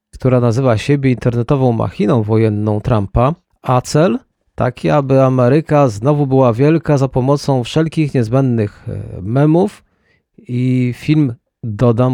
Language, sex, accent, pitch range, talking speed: Polish, male, native, 120-150 Hz, 115 wpm